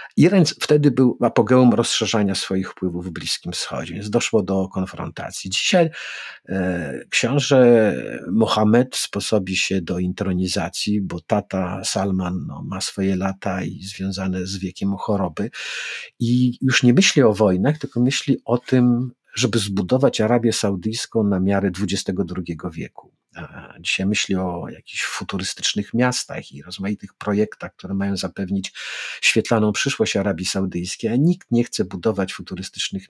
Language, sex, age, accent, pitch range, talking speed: Polish, male, 50-69, native, 95-115 Hz, 135 wpm